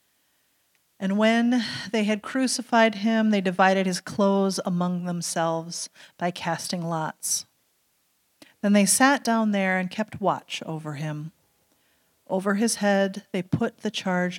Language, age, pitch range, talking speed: English, 40-59, 165-210 Hz, 135 wpm